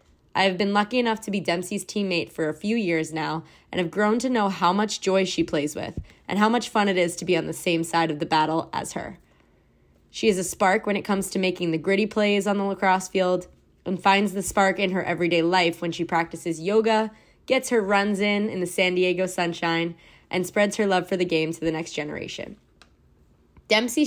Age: 20-39